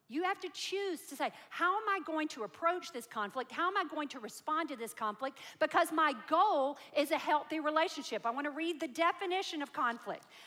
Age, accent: 50-69, American